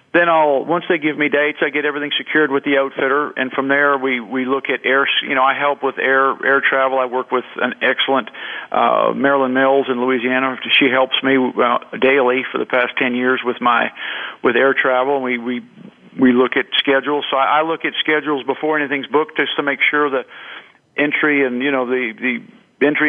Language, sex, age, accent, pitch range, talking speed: English, male, 50-69, American, 130-145 Hz, 215 wpm